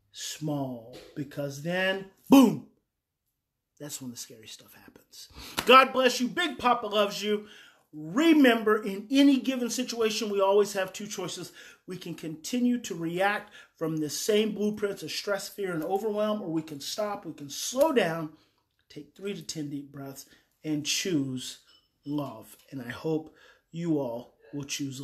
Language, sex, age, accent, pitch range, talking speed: English, male, 30-49, American, 165-230 Hz, 155 wpm